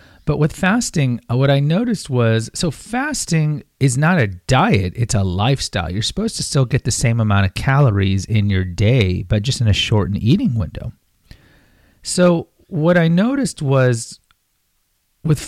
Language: English